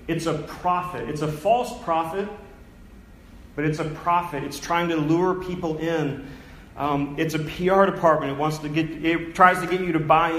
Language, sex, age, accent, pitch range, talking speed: English, male, 40-59, American, 145-190 Hz, 190 wpm